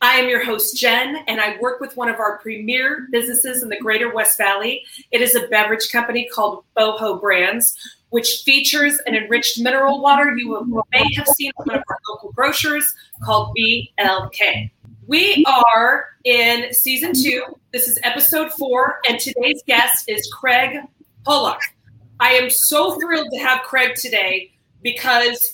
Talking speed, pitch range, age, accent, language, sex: 160 wpm, 225-275 Hz, 30-49, American, English, female